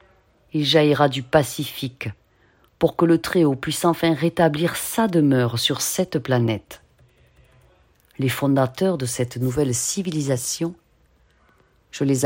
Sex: female